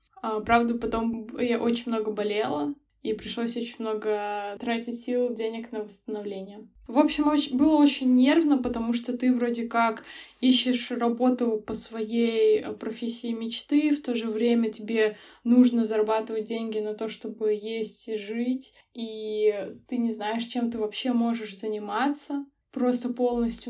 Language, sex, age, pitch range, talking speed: Russian, female, 20-39, 220-245 Hz, 140 wpm